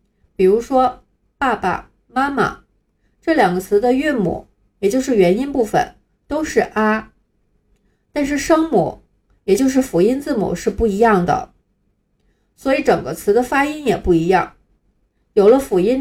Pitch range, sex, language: 190-265 Hz, female, Chinese